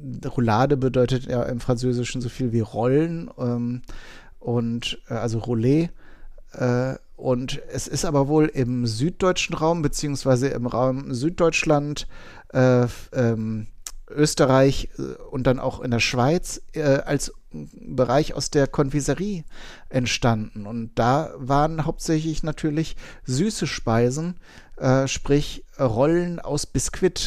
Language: German